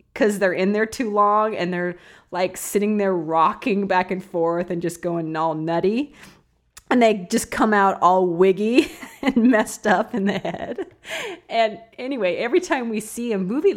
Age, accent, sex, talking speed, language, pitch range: 30-49, American, female, 180 wpm, English, 180-270 Hz